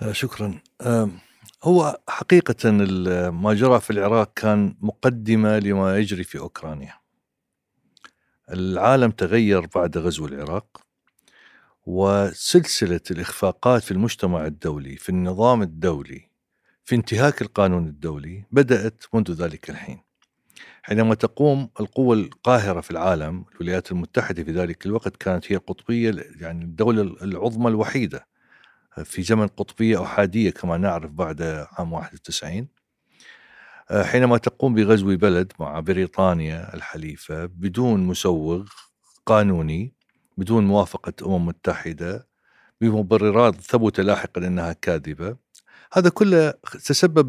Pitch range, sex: 90-120 Hz, male